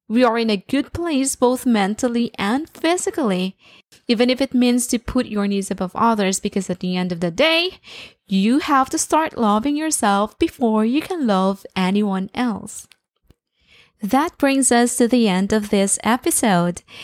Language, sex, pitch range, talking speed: English, female, 210-280 Hz, 170 wpm